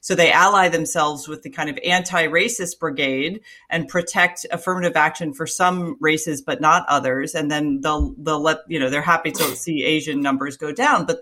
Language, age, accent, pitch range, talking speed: English, 30-49, American, 155-200 Hz, 195 wpm